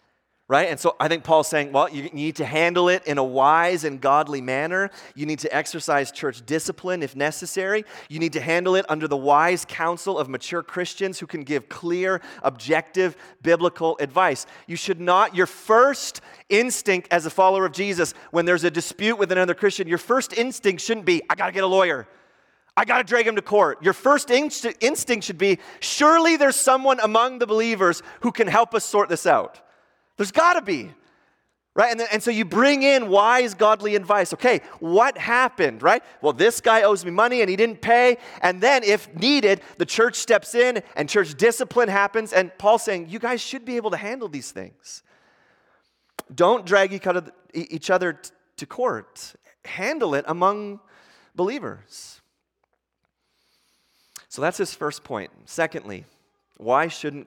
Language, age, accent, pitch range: English, 30-49, American, 165-230 Hz